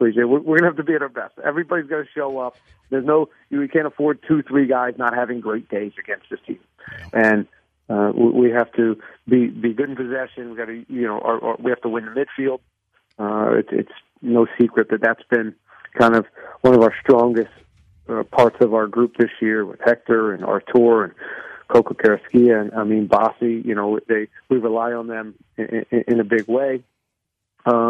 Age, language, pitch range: 40-59, English, 110-125 Hz